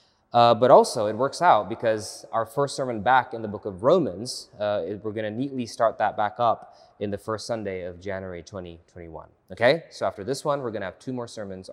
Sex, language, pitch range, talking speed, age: male, English, 100-130 Hz, 225 wpm, 20-39